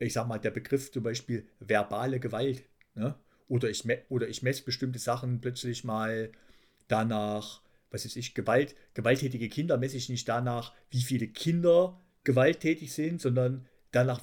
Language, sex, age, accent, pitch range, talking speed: German, male, 50-69, German, 120-155 Hz, 160 wpm